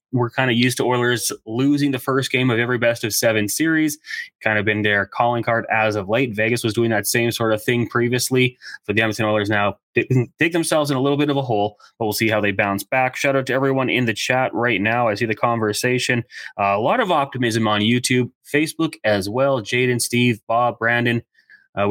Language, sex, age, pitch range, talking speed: English, male, 20-39, 110-135 Hz, 235 wpm